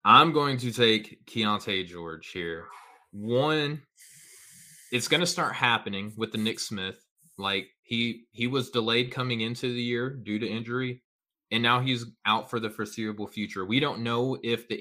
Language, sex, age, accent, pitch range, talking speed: English, male, 20-39, American, 105-120 Hz, 170 wpm